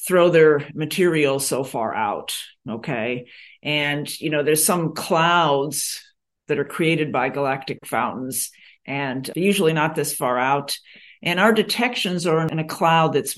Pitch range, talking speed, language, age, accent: 125-160 Hz, 150 wpm, English, 50-69, American